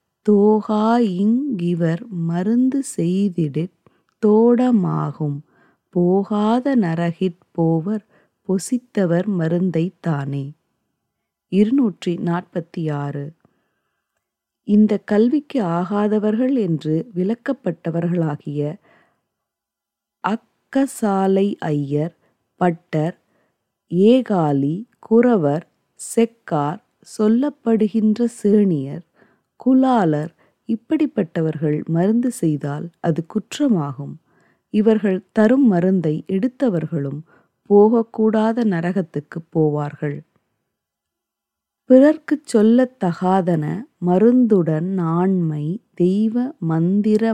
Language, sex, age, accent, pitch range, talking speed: Tamil, female, 20-39, native, 165-220 Hz, 55 wpm